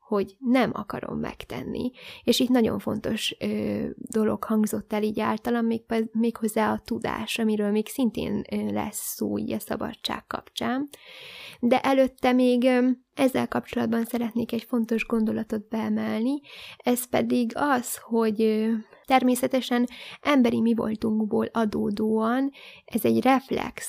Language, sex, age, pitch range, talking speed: Hungarian, female, 20-39, 215-250 Hz, 125 wpm